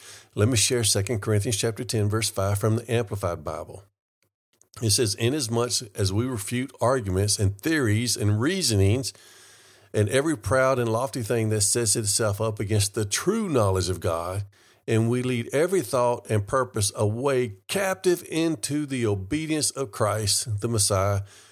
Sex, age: male, 50-69